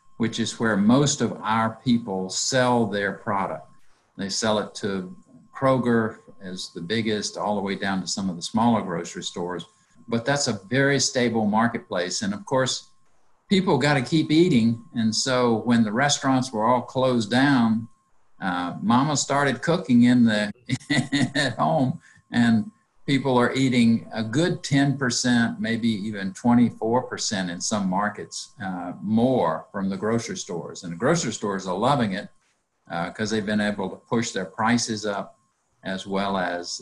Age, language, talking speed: 50-69, English, 160 wpm